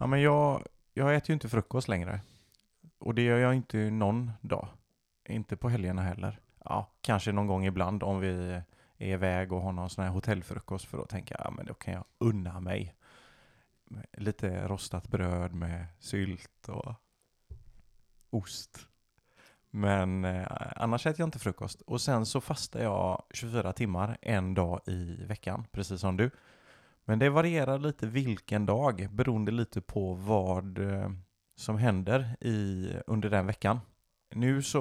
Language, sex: Swedish, male